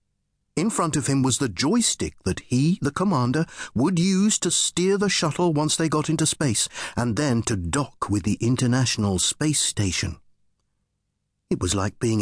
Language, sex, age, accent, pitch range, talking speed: English, male, 50-69, British, 100-155 Hz, 170 wpm